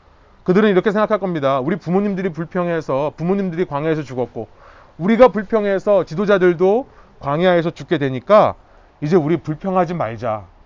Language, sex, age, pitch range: Korean, male, 30-49, 140-195 Hz